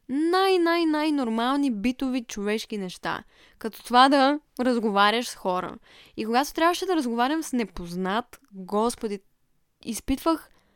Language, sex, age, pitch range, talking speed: Bulgarian, female, 10-29, 200-260 Hz, 105 wpm